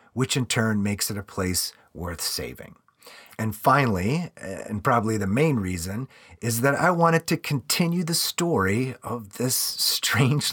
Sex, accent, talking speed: male, American, 155 wpm